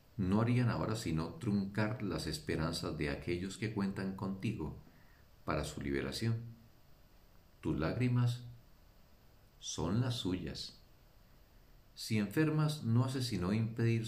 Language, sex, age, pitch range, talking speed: Spanish, male, 50-69, 80-115 Hz, 110 wpm